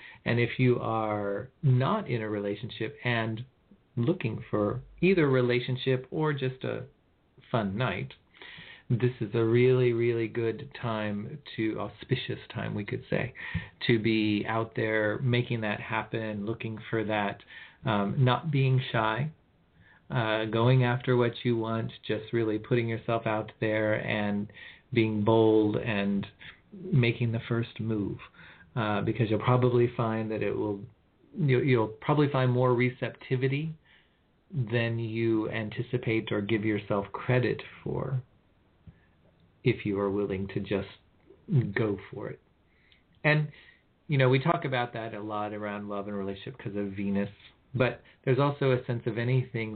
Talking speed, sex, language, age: 145 wpm, male, English, 40-59